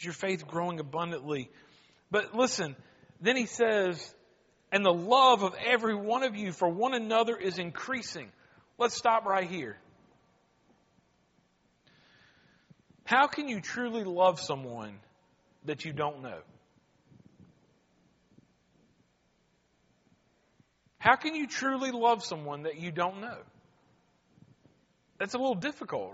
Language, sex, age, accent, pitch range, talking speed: English, male, 40-59, American, 155-230 Hz, 115 wpm